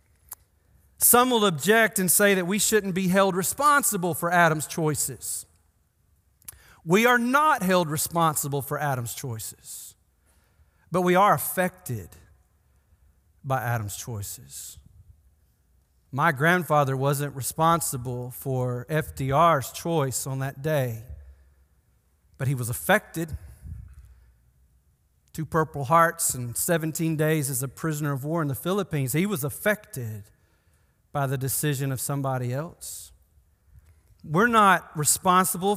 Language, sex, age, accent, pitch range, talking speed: English, male, 40-59, American, 120-195 Hz, 115 wpm